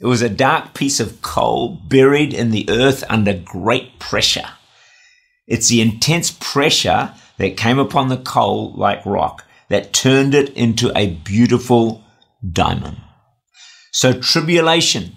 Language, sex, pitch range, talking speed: English, male, 100-130 Hz, 135 wpm